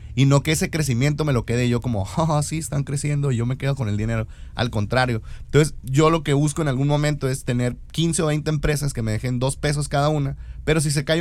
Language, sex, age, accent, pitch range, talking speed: Spanish, male, 30-49, Mexican, 120-155 Hz, 255 wpm